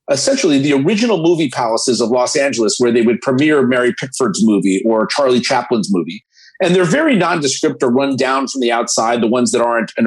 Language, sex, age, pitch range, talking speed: English, male, 40-59, 130-190 Hz, 205 wpm